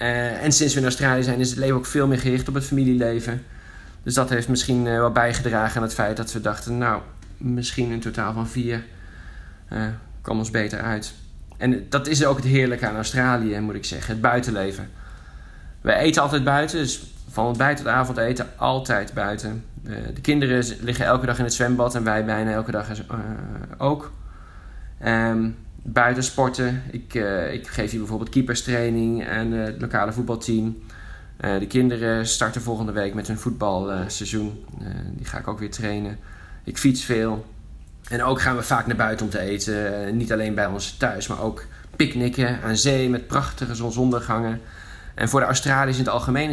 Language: Dutch